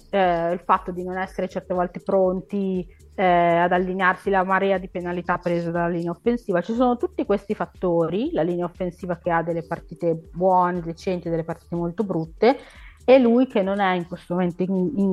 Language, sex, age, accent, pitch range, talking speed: Italian, female, 30-49, native, 165-200 Hz, 190 wpm